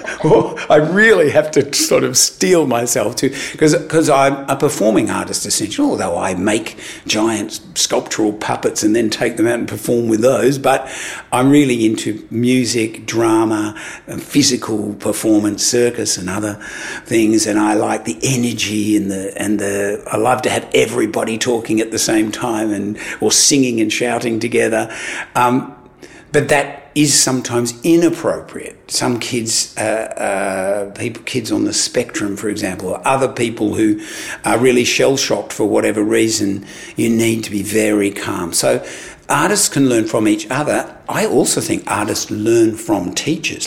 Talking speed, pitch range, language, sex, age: 160 wpm, 110-150 Hz, English, male, 60-79